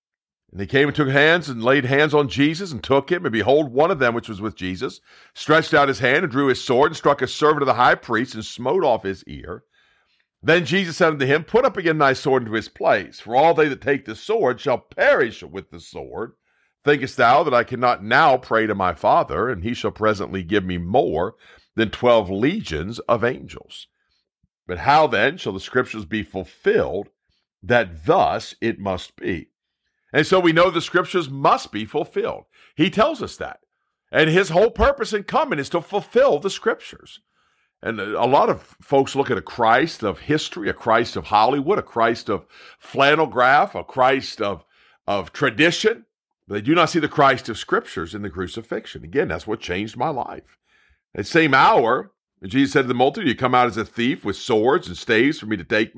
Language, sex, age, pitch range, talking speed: English, male, 50-69, 110-160 Hz, 210 wpm